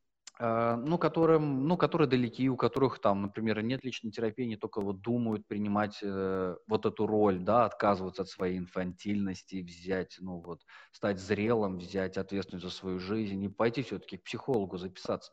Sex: male